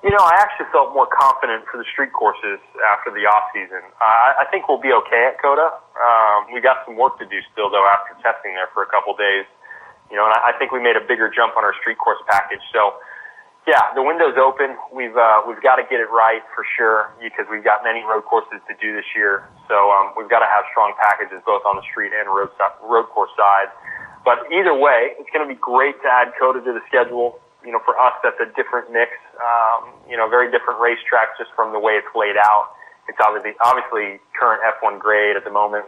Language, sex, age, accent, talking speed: English, male, 20-39, American, 235 wpm